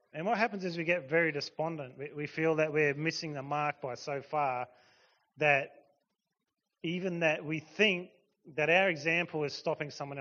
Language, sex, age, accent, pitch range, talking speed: English, male, 30-49, Australian, 145-180 Hz, 170 wpm